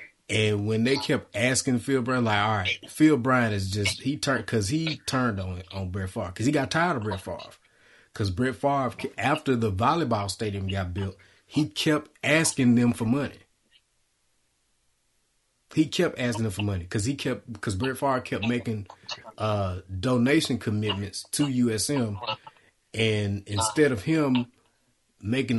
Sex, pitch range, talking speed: male, 105-130 Hz, 160 wpm